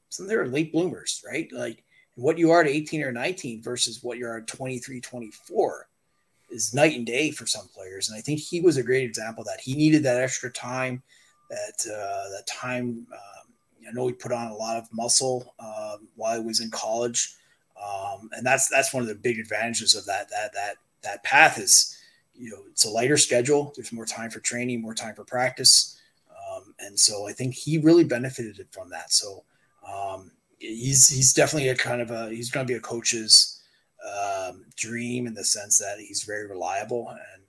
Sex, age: male, 30-49